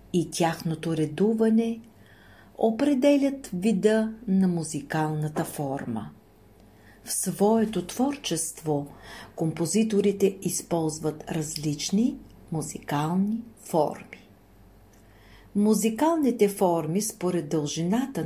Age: 50-69